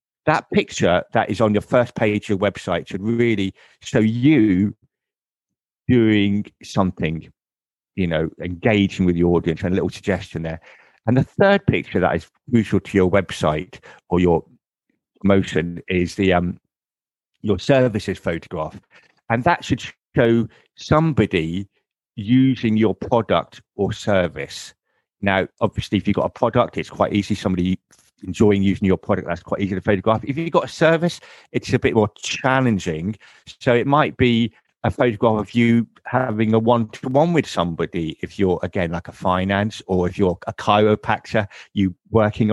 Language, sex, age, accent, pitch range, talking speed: English, male, 50-69, British, 95-120 Hz, 160 wpm